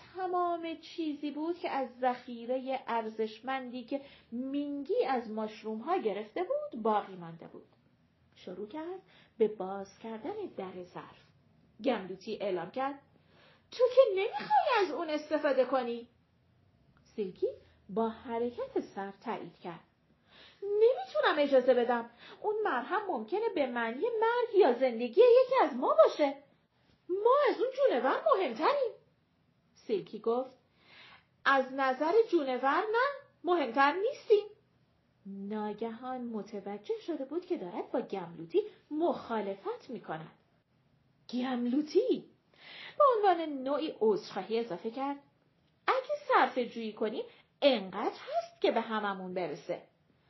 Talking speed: 110 wpm